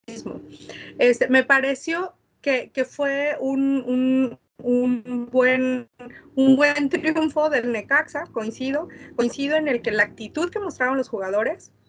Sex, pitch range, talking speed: female, 230-285 Hz, 130 wpm